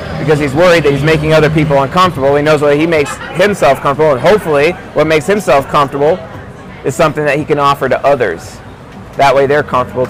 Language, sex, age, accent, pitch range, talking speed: English, male, 30-49, American, 125-160 Hz, 200 wpm